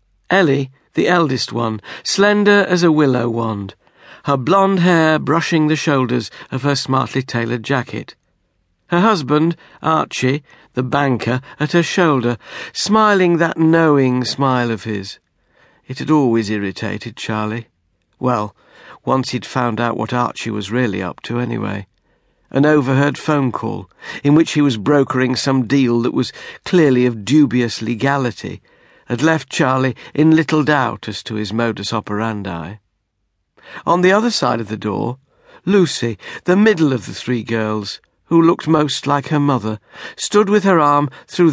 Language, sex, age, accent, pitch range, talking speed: English, male, 60-79, British, 115-160 Hz, 150 wpm